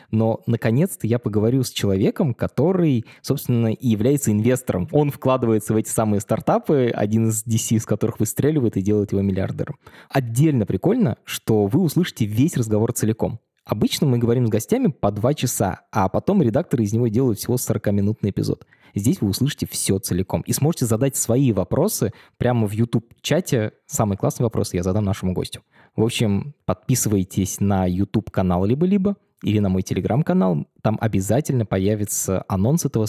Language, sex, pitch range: Russian, male, 105-135 Hz